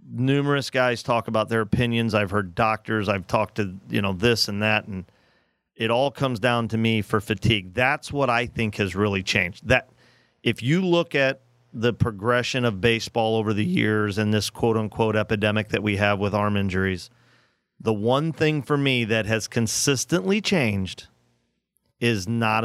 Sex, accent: male, American